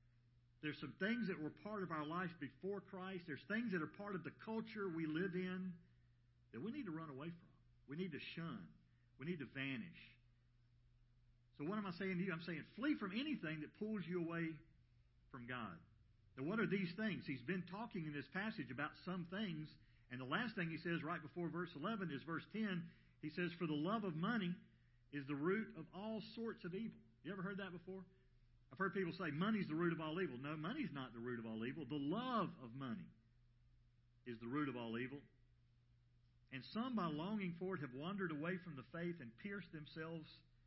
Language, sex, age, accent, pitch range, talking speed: English, male, 50-69, American, 120-185 Hz, 215 wpm